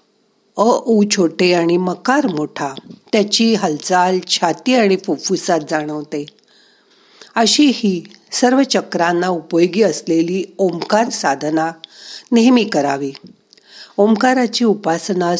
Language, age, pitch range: Marathi, 50-69, 165-220 Hz